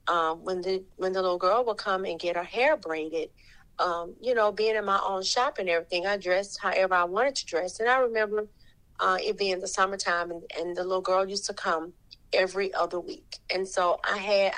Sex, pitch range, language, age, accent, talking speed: female, 180-225 Hz, English, 30-49, American, 220 wpm